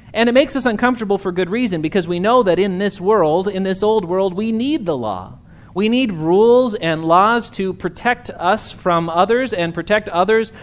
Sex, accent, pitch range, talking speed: male, American, 155-215 Hz, 205 wpm